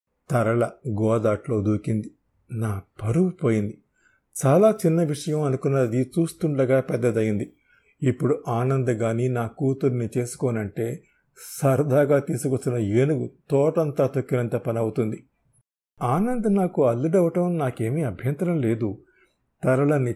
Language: Telugu